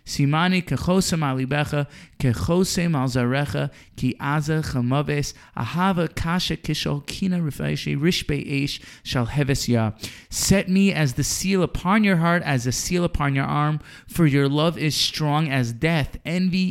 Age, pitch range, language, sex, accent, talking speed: 20-39, 140-175 Hz, English, male, American, 80 wpm